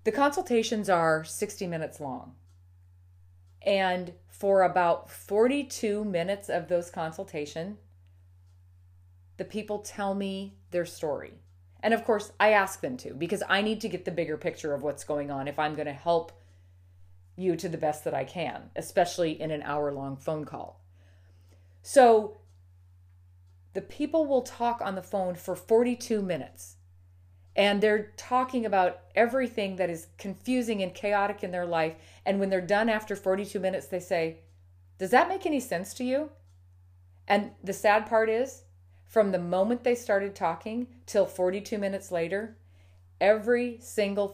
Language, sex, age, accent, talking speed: English, female, 30-49, American, 155 wpm